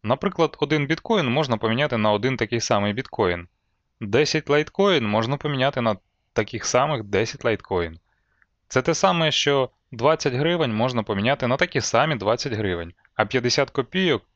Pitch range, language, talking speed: 100-150 Hz, Ukrainian, 145 wpm